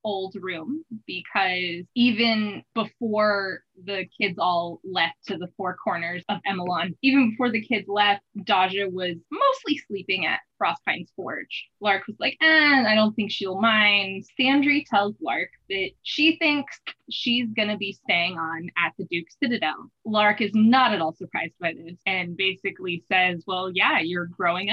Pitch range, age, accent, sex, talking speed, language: 180-225 Hz, 20-39, American, female, 165 wpm, English